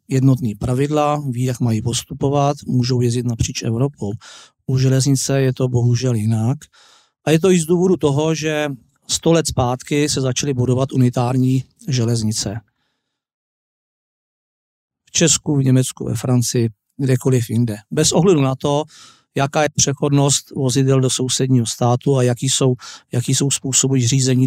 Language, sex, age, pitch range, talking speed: Czech, male, 40-59, 125-140 Hz, 140 wpm